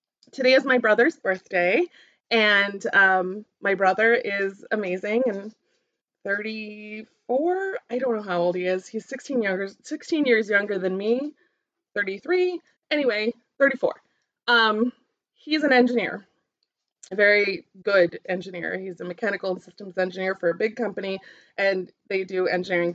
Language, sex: English, female